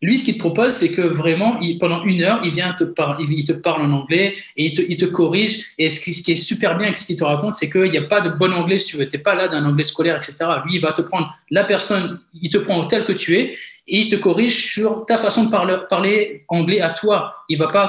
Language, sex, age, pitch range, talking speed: French, male, 20-39, 155-200 Hz, 295 wpm